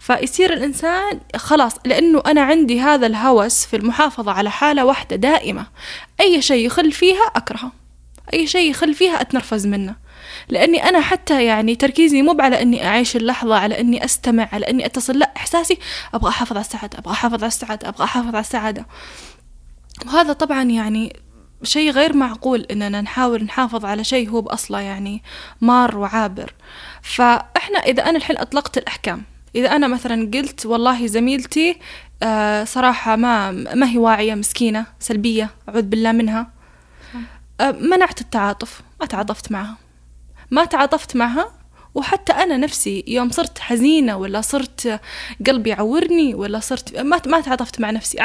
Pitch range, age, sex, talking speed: 220-295 Hz, 10-29, female, 145 wpm